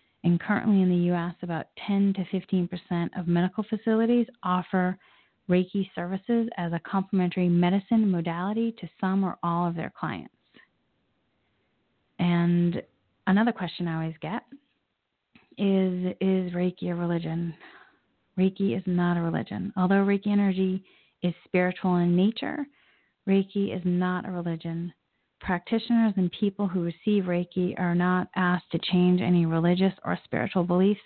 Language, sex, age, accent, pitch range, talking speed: English, female, 30-49, American, 175-195 Hz, 135 wpm